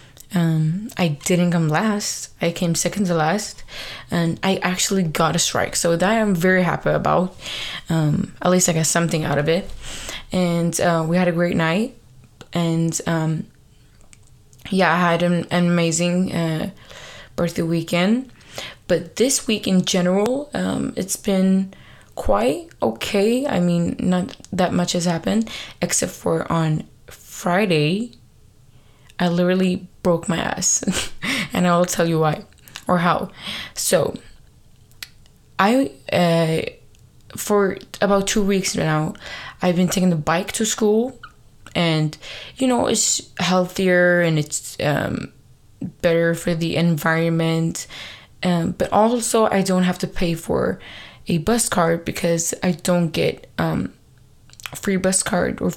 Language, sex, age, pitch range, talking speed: English, female, 20-39, 165-190 Hz, 140 wpm